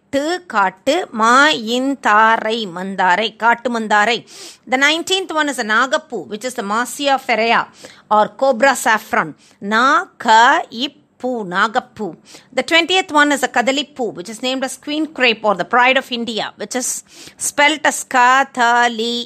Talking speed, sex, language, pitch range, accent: 150 wpm, female, Tamil, 220-285 Hz, native